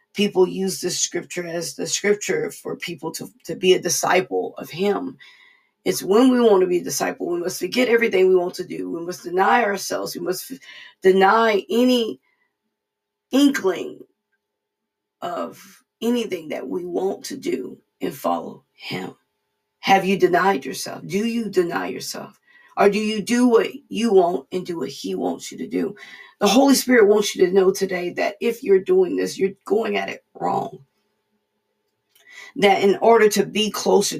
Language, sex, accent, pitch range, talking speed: English, female, American, 185-250 Hz, 170 wpm